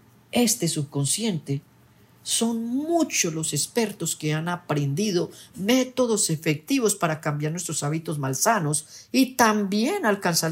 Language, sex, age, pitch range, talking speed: Spanish, female, 40-59, 145-200 Hz, 110 wpm